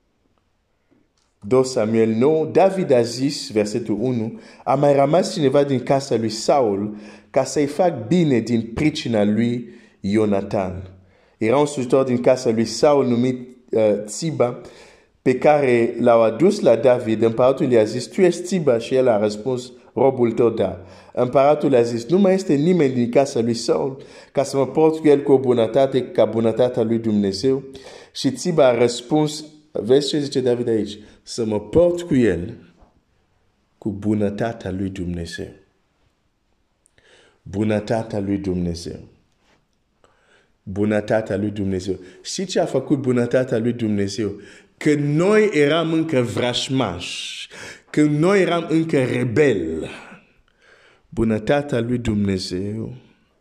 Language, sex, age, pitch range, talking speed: Romanian, male, 50-69, 105-140 Hz, 140 wpm